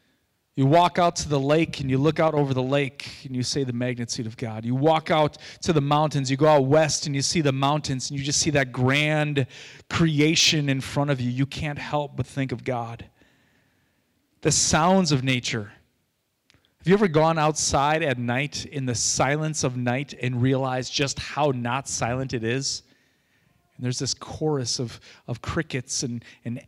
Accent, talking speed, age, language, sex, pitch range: American, 190 wpm, 30-49, English, male, 125-155 Hz